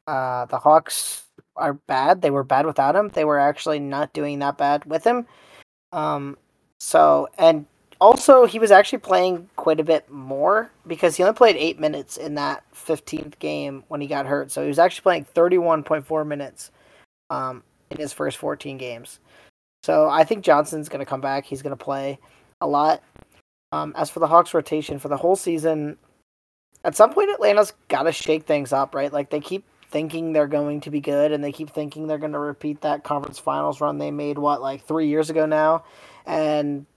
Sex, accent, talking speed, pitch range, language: male, American, 200 wpm, 140-160 Hz, English